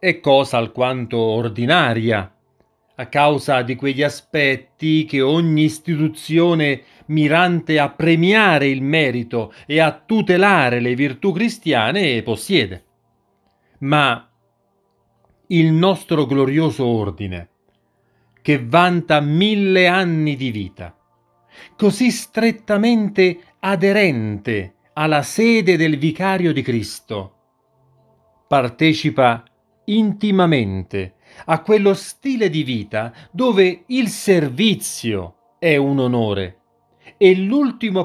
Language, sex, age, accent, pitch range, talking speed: Italian, male, 40-59, native, 120-190 Hz, 90 wpm